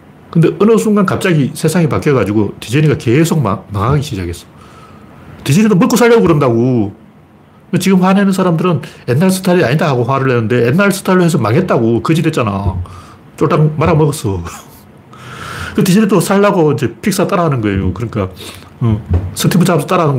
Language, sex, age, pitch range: Korean, male, 40-59, 105-160 Hz